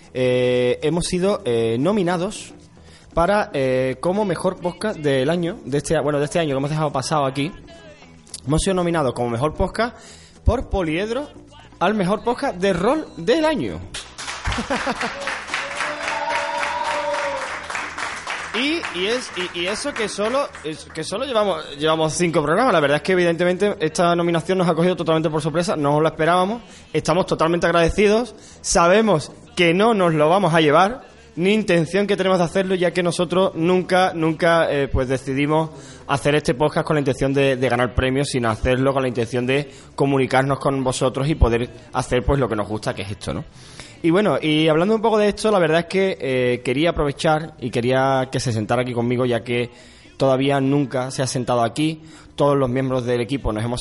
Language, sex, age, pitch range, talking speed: Spanish, male, 20-39, 130-185 Hz, 180 wpm